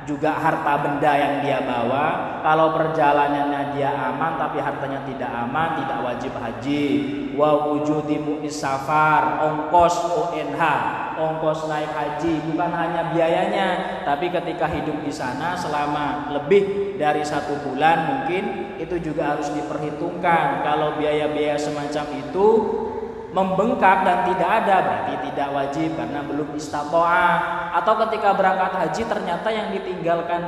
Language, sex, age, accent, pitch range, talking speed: Indonesian, male, 20-39, native, 150-185 Hz, 125 wpm